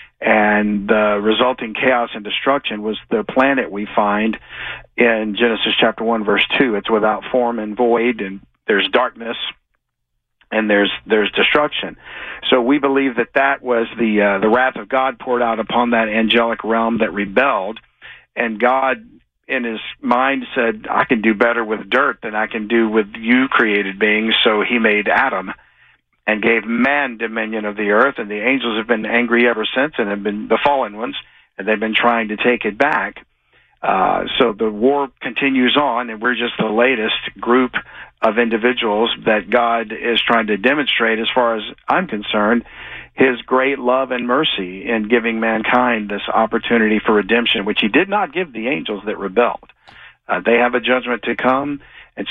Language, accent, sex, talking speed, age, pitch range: English, American, male, 180 wpm, 50-69, 110-125 Hz